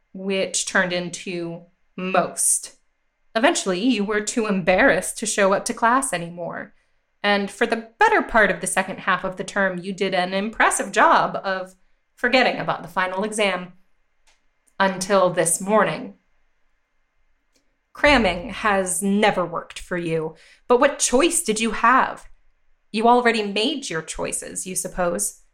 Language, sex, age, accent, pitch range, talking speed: English, female, 20-39, American, 185-240 Hz, 140 wpm